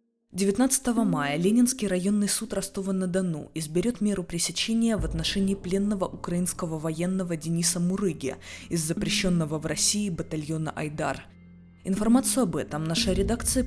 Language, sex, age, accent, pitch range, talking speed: Russian, female, 20-39, native, 155-200 Hz, 120 wpm